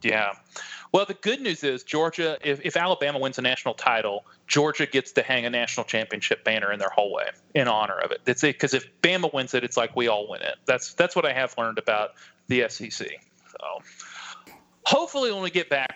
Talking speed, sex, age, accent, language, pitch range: 215 wpm, male, 30-49, American, English, 130-175 Hz